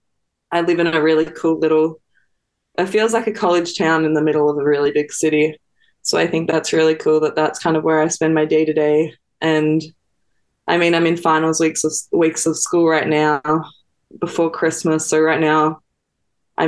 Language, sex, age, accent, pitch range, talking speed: English, female, 20-39, Australian, 155-170 Hz, 200 wpm